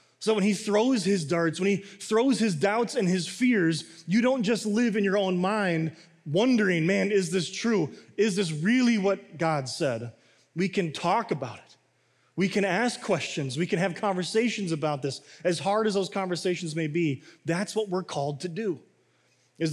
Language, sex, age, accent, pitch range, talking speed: English, male, 20-39, American, 145-195 Hz, 190 wpm